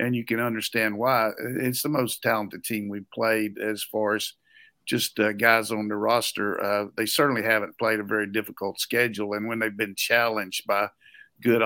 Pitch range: 105-120 Hz